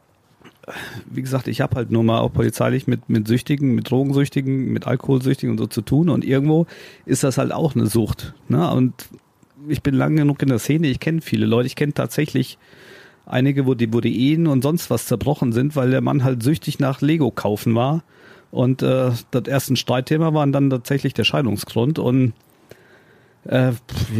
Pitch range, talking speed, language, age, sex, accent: 120-145 Hz, 185 wpm, German, 40-59, male, German